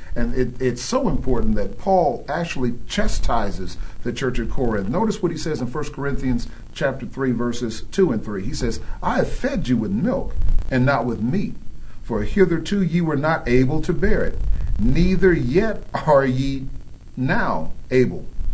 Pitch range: 115-160 Hz